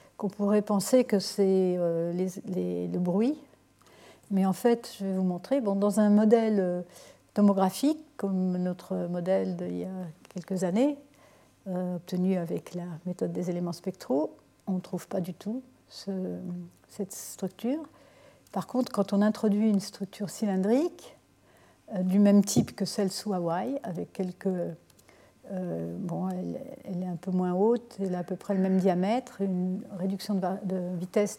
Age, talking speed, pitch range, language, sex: 60-79, 165 wpm, 180-220 Hz, French, female